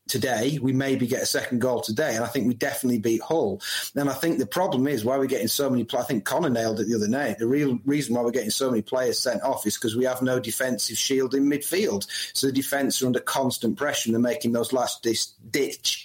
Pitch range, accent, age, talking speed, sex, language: 125-150 Hz, British, 30-49, 245 wpm, male, English